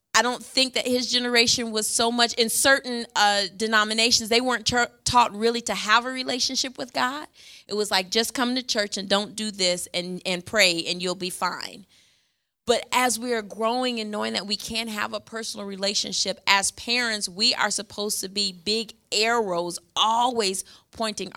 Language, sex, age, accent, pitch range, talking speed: English, female, 30-49, American, 205-245 Hz, 185 wpm